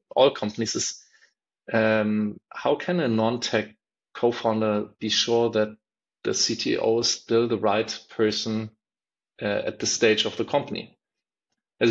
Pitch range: 105-120 Hz